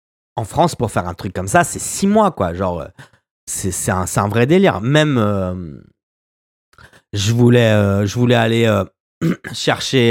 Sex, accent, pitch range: male, French, 100-130 Hz